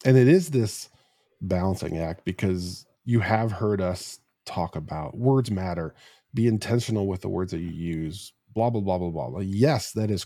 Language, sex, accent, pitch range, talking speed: English, male, American, 95-125 Hz, 180 wpm